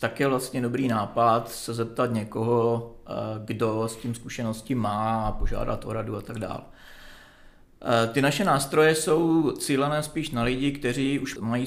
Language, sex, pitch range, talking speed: Czech, male, 115-125 Hz, 160 wpm